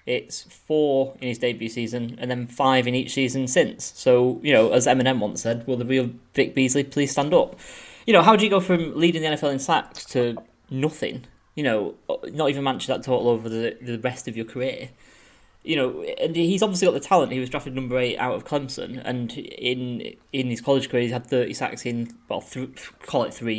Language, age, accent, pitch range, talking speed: English, 10-29, British, 120-135 Hz, 225 wpm